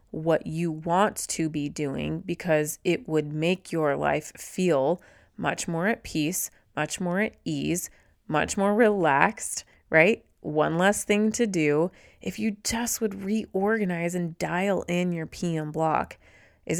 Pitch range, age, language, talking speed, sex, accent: 150-195 Hz, 30-49, English, 150 wpm, female, American